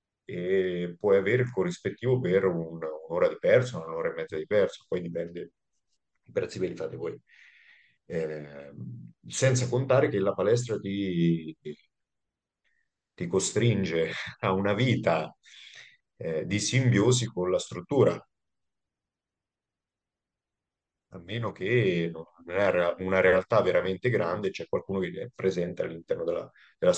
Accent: native